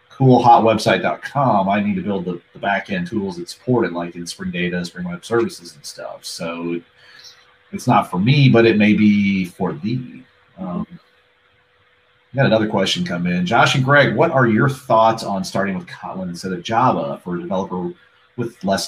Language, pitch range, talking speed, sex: English, 90-140 Hz, 180 wpm, male